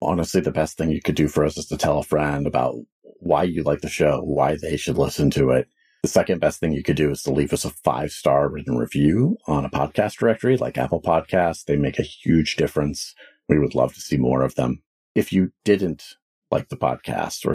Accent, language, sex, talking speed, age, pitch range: American, English, male, 235 wpm, 40-59, 70-85 Hz